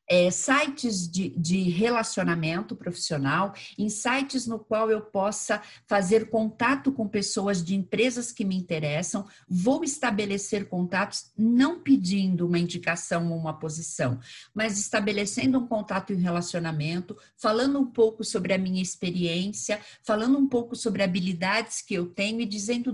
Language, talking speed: Portuguese, 140 wpm